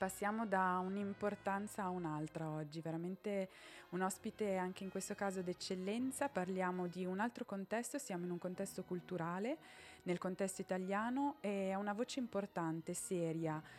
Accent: native